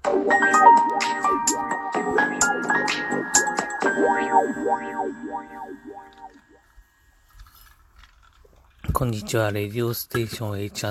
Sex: male